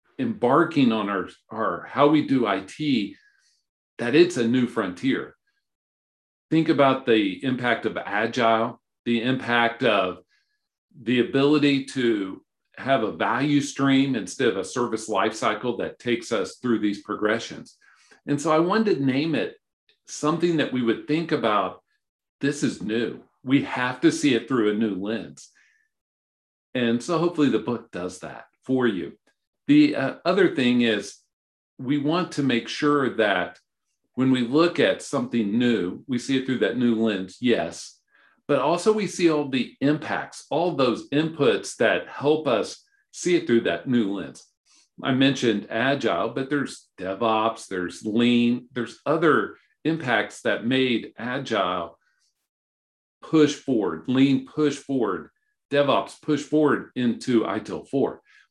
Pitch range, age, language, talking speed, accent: 115-150 Hz, 50-69, English, 145 wpm, American